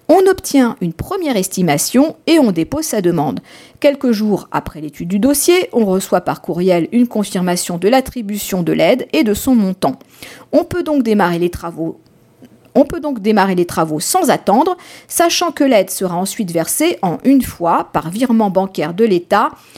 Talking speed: 175 wpm